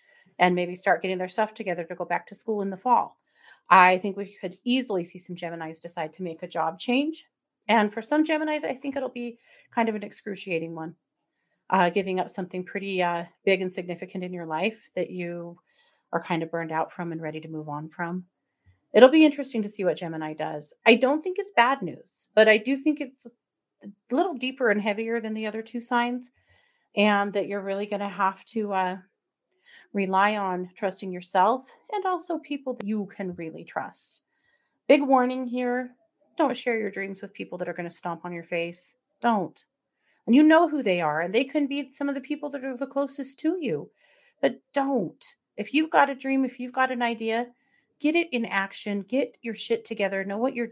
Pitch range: 180-265 Hz